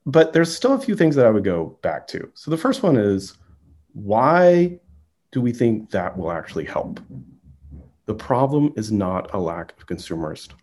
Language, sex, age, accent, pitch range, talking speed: English, male, 40-59, American, 100-160 Hz, 185 wpm